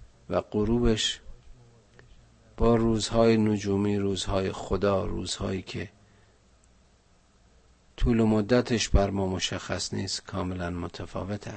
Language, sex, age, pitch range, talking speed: Persian, male, 50-69, 90-110 Hz, 95 wpm